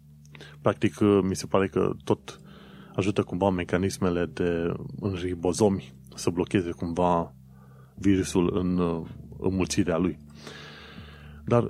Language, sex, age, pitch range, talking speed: Romanian, male, 30-49, 75-110 Hz, 105 wpm